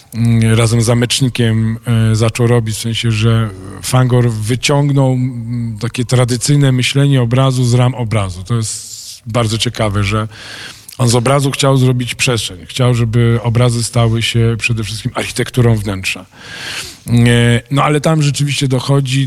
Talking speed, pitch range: 130 wpm, 115-135 Hz